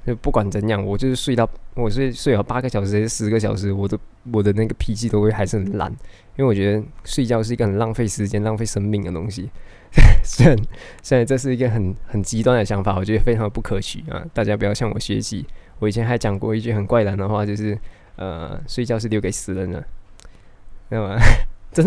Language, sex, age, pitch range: Chinese, male, 20-39, 100-120 Hz